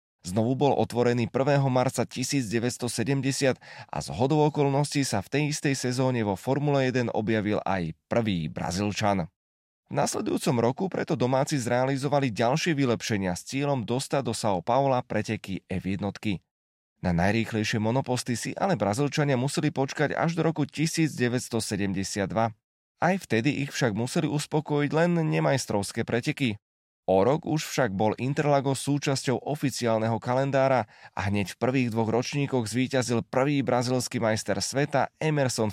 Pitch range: 110-145 Hz